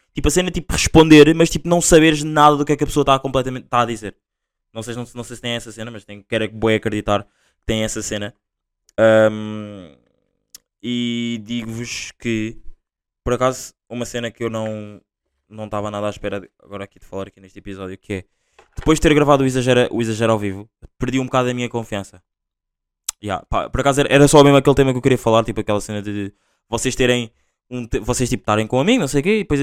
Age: 20-39